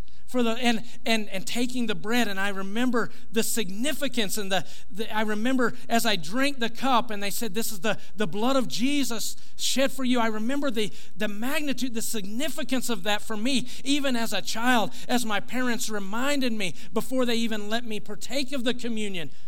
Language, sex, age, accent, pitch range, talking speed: English, male, 50-69, American, 185-245 Hz, 200 wpm